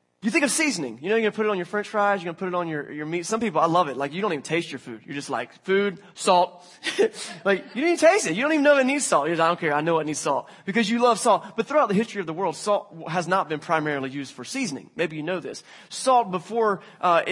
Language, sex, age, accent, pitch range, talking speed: English, male, 20-39, American, 165-210 Hz, 310 wpm